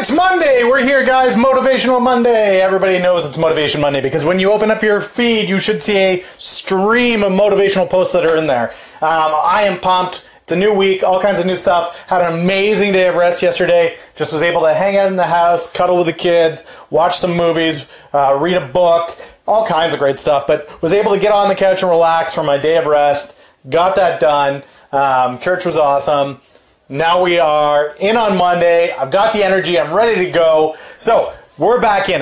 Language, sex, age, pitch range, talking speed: English, male, 30-49, 165-210 Hz, 215 wpm